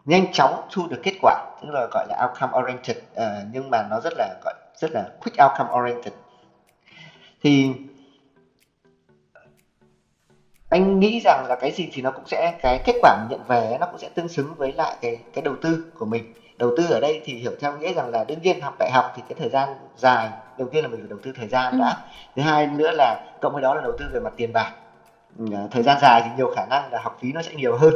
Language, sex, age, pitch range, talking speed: Vietnamese, male, 30-49, 120-160 Hz, 240 wpm